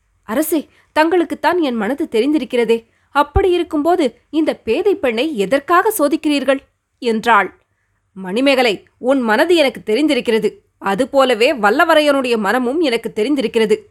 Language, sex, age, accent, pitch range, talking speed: Tamil, female, 20-39, native, 240-325 Hz, 100 wpm